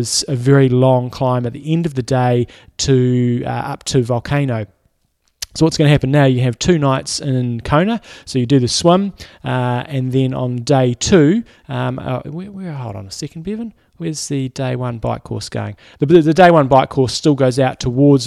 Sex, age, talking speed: male, 20-39, 205 wpm